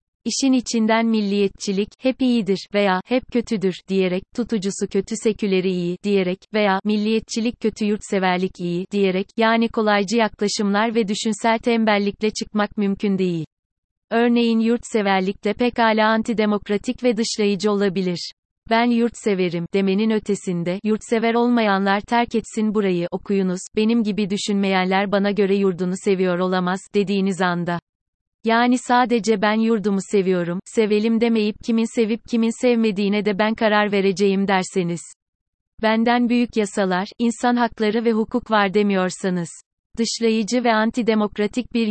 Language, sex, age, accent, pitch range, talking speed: Turkish, female, 30-49, native, 195-225 Hz, 125 wpm